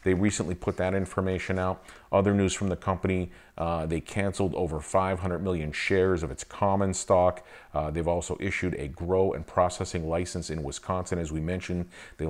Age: 40-59